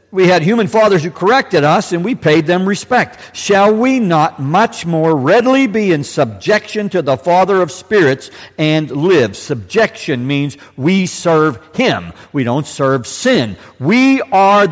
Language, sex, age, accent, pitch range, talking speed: English, male, 60-79, American, 115-190 Hz, 160 wpm